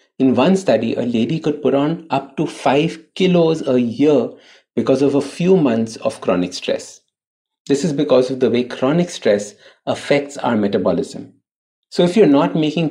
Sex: male